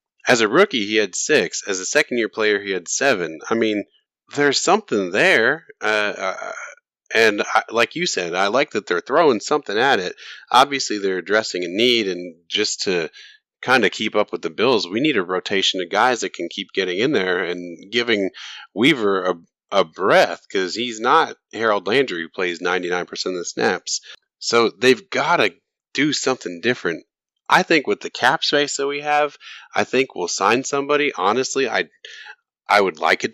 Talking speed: 185 wpm